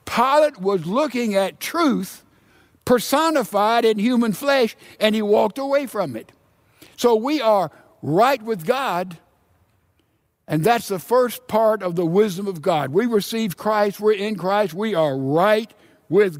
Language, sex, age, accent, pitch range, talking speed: English, male, 60-79, American, 180-235 Hz, 150 wpm